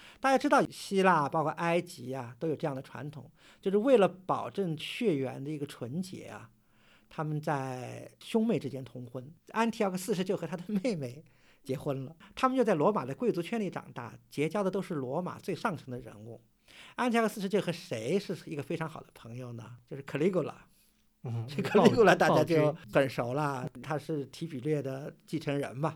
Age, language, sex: 50-69, Chinese, male